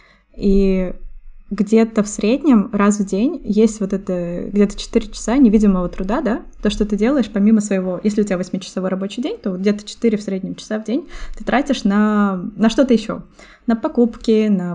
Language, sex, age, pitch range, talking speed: Russian, female, 20-39, 200-235 Hz, 185 wpm